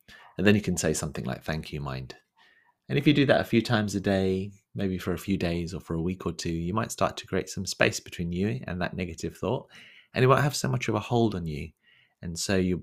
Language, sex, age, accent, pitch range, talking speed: English, male, 30-49, British, 80-100 Hz, 270 wpm